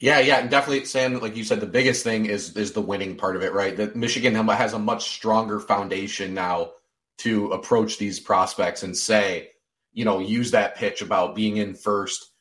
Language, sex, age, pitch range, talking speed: English, male, 30-49, 105-125 Hz, 205 wpm